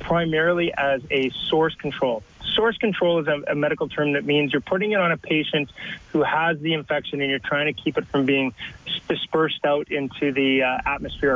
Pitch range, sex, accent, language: 140-165 Hz, male, American, English